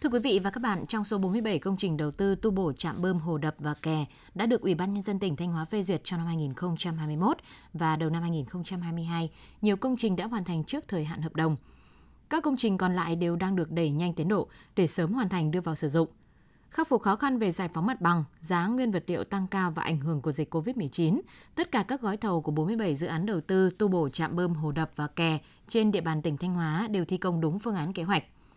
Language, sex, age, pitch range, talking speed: Vietnamese, female, 20-39, 165-210 Hz, 260 wpm